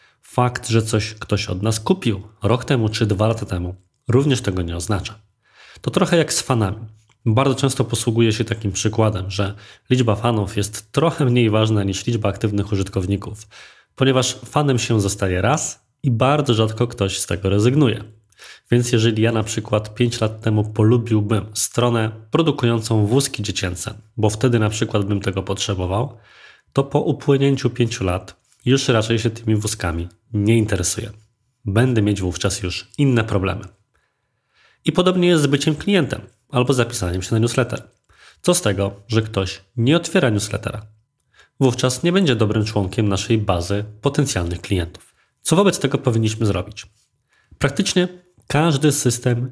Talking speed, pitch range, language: 150 wpm, 105-125 Hz, Polish